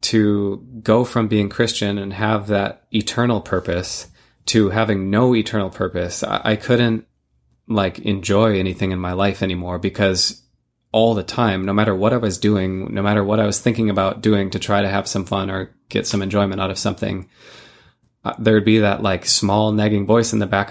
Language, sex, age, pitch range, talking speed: English, male, 20-39, 95-115 Hz, 195 wpm